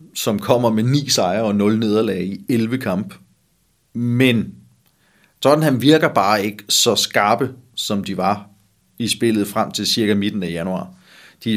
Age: 30-49